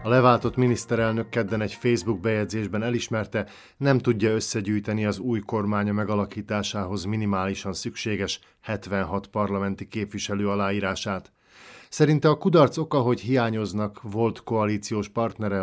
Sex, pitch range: male, 95-115 Hz